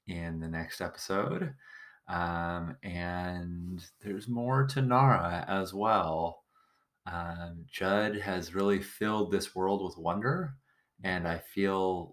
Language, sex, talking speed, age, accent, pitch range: English, male, 120 wpm, 30-49, American, 85-100 Hz